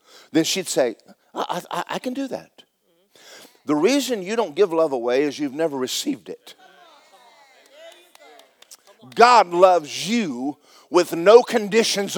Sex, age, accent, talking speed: male, 50-69, American, 135 wpm